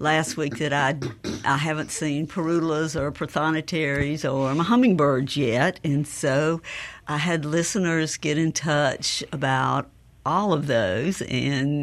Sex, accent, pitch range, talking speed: female, American, 140-160 Hz, 135 wpm